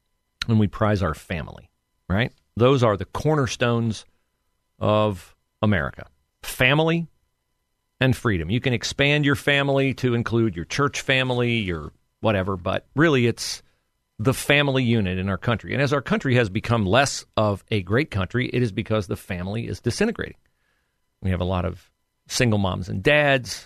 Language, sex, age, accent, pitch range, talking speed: English, male, 40-59, American, 95-125 Hz, 160 wpm